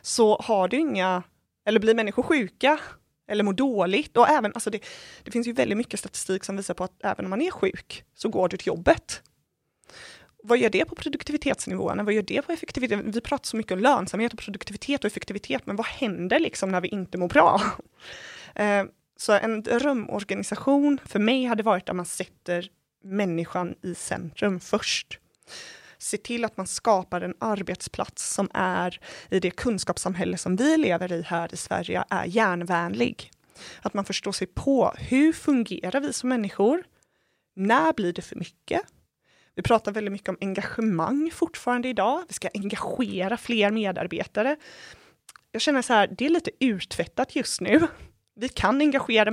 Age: 20-39